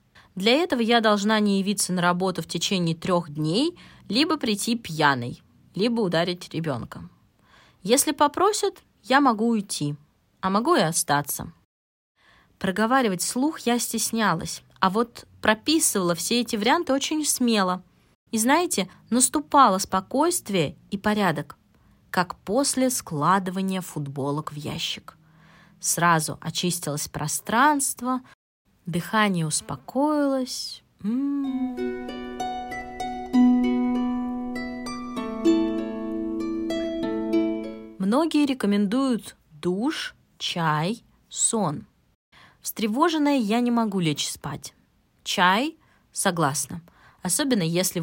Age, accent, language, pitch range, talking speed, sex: 20-39, native, Russian, 155-245 Hz, 90 wpm, female